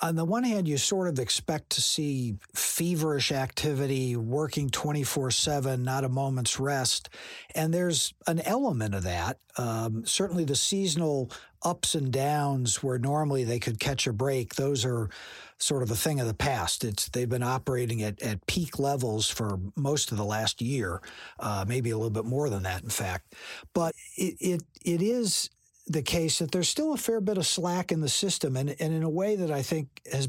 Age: 50-69